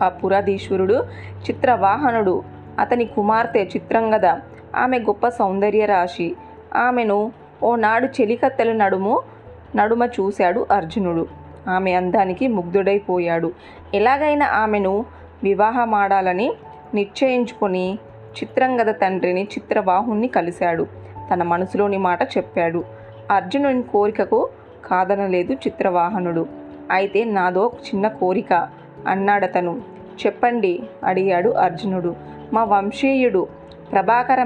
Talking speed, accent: 80 wpm, native